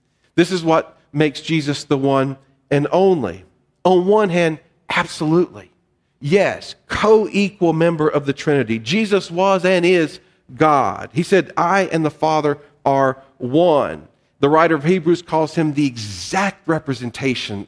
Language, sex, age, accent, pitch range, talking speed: English, male, 40-59, American, 135-180 Hz, 140 wpm